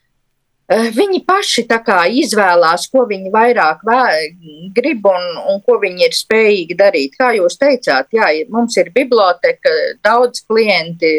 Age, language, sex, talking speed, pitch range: 40-59, Russian, female, 140 wpm, 170-255 Hz